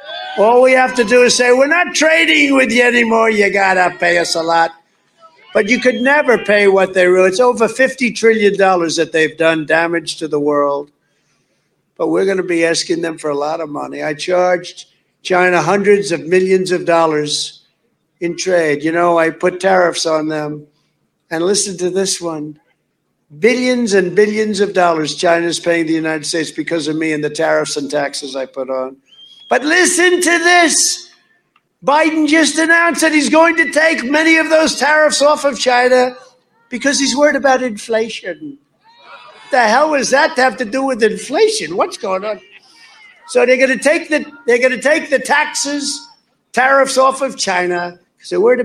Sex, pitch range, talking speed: male, 170-275 Hz, 185 wpm